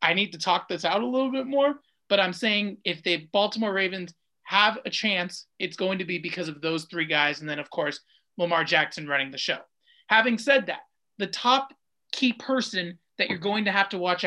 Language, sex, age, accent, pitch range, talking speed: English, male, 30-49, American, 165-215 Hz, 220 wpm